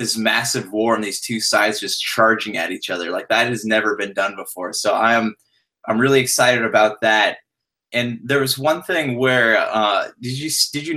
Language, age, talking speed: English, 20-39, 200 wpm